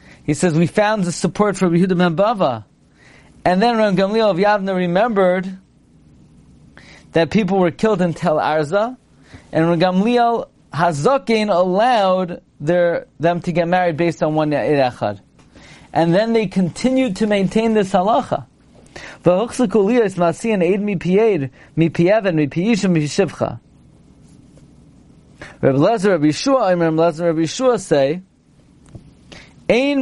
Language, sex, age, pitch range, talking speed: English, male, 40-59, 160-210 Hz, 105 wpm